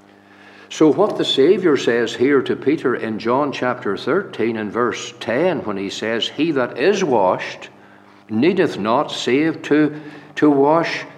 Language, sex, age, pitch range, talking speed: English, male, 60-79, 100-135 Hz, 150 wpm